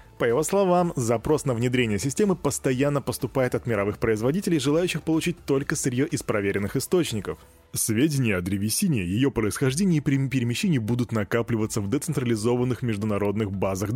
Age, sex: 20-39, male